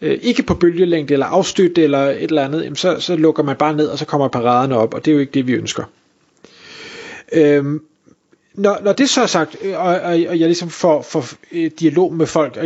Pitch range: 155-195 Hz